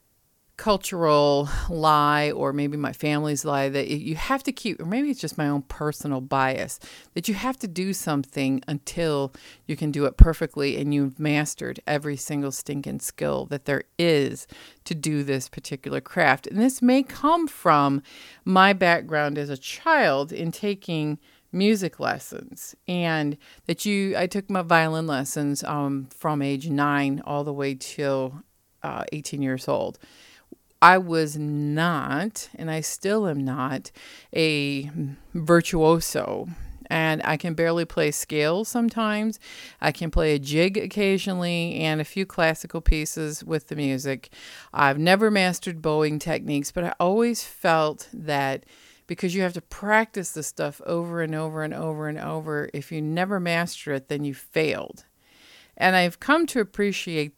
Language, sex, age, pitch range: English, female, 40-59, 145-180 Hz